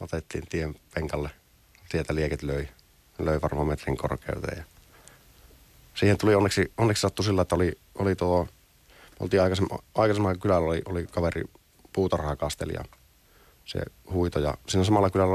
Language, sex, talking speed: Finnish, male, 135 wpm